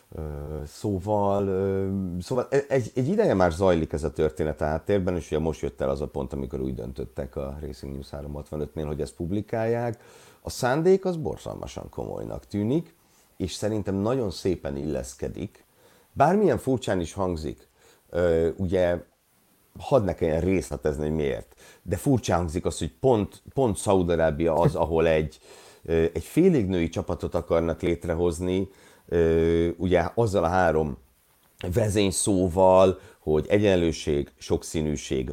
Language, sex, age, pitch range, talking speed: Hungarian, male, 50-69, 75-100 Hz, 140 wpm